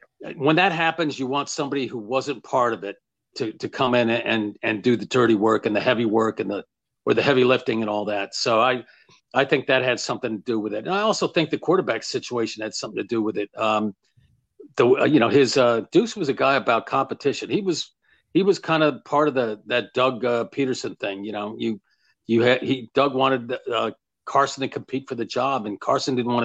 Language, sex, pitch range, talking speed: English, male, 110-135 Hz, 235 wpm